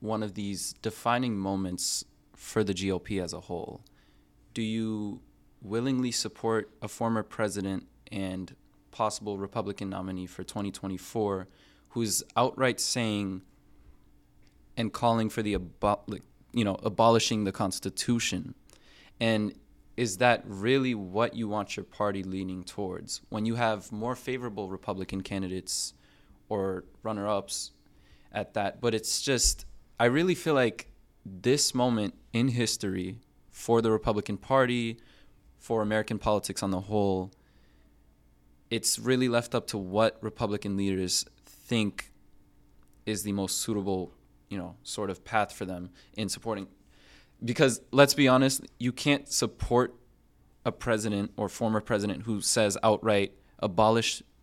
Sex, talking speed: male, 130 wpm